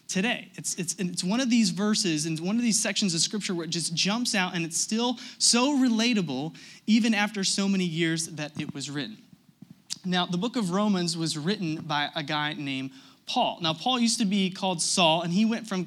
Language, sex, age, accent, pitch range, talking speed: English, male, 30-49, American, 175-225 Hz, 215 wpm